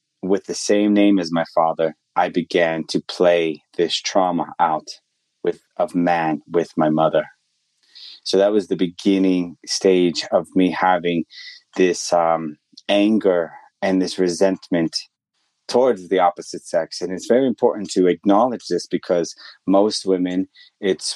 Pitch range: 85-95 Hz